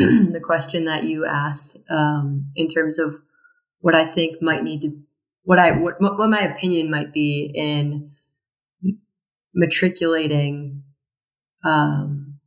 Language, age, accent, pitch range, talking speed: English, 30-49, American, 145-170 Hz, 125 wpm